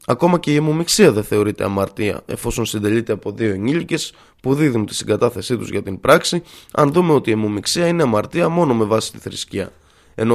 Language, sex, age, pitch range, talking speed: Greek, male, 20-39, 110-160 Hz, 190 wpm